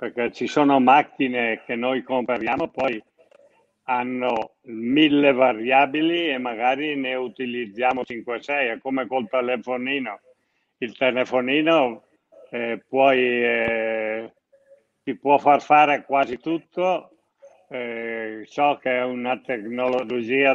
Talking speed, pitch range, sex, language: 110 wpm, 125-150 Hz, male, Italian